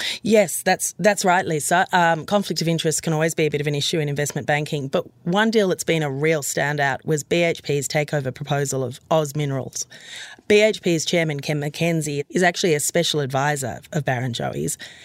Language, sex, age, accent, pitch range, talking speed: English, female, 30-49, Australian, 145-180 Hz, 185 wpm